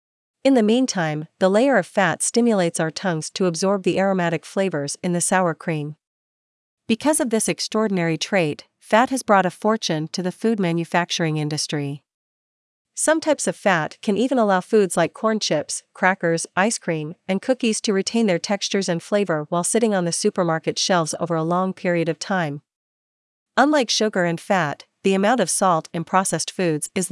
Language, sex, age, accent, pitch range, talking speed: English, female, 40-59, American, 165-210 Hz, 175 wpm